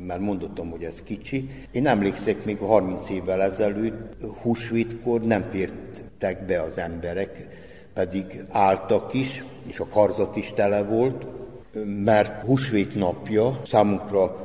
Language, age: Hungarian, 60-79